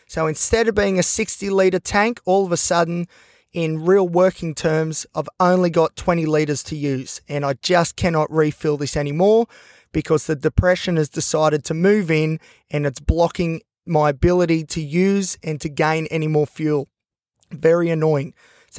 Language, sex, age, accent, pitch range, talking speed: English, male, 20-39, Australian, 155-180 Hz, 170 wpm